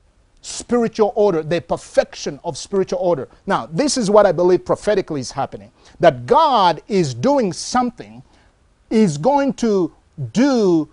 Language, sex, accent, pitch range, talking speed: English, male, Nigerian, 160-220 Hz, 135 wpm